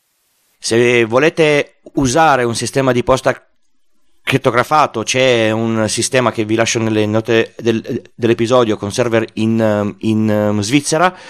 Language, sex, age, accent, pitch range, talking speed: Italian, male, 30-49, native, 100-120 Hz, 115 wpm